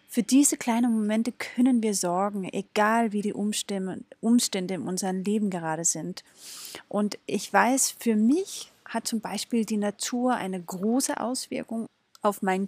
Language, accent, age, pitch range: German, German, 30-49, 195-235 Hz